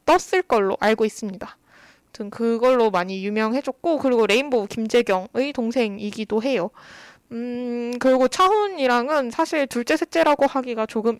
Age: 20-39